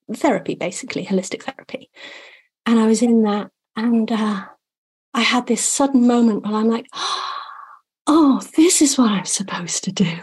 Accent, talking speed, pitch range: British, 160 wpm, 205-260 Hz